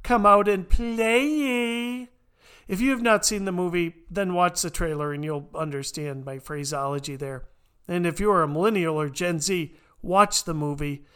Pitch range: 145-200 Hz